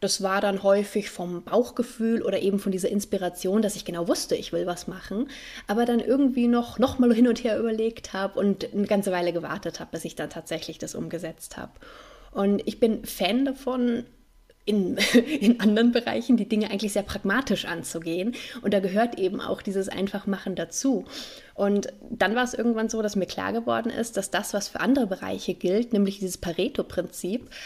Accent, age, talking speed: German, 20-39, 190 wpm